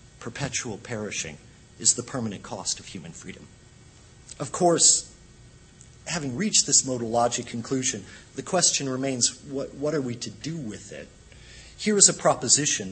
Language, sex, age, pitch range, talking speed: English, male, 50-69, 115-150 Hz, 150 wpm